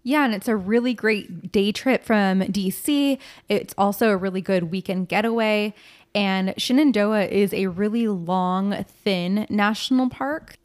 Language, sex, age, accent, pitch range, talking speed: English, female, 20-39, American, 190-225 Hz, 145 wpm